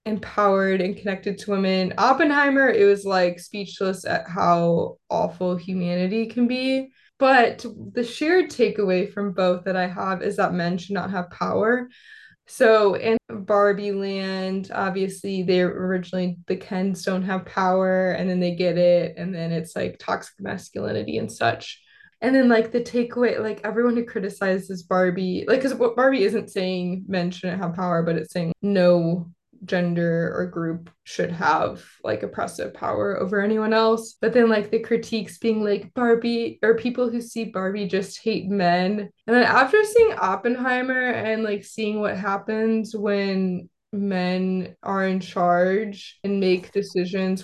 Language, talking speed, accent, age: English, 160 wpm, American, 20-39